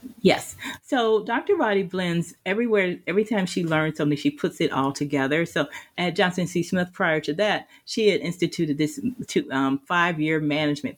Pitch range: 145-185 Hz